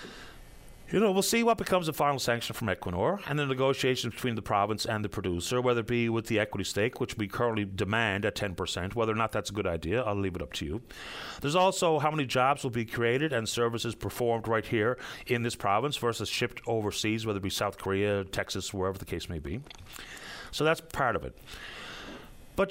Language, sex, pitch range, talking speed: English, male, 110-155 Hz, 215 wpm